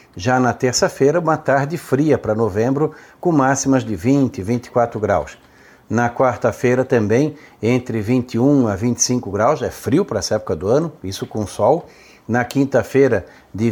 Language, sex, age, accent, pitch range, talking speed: Portuguese, male, 60-79, Brazilian, 120-145 Hz, 155 wpm